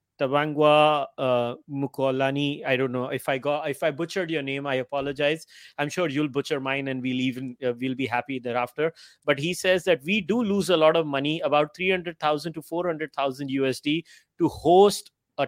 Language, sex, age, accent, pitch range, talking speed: English, male, 30-49, Indian, 140-170 Hz, 170 wpm